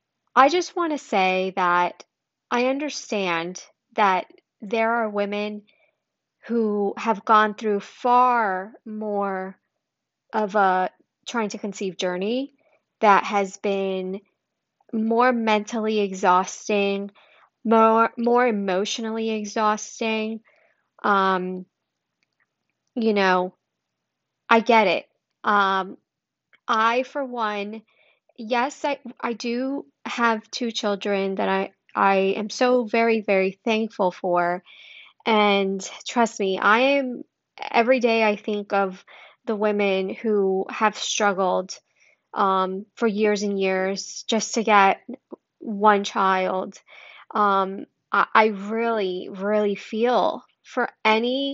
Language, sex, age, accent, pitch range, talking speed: English, female, 30-49, American, 195-235 Hz, 105 wpm